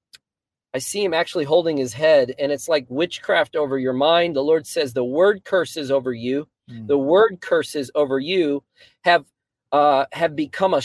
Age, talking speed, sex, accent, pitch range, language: 40-59, 175 wpm, male, American, 125-165 Hz, English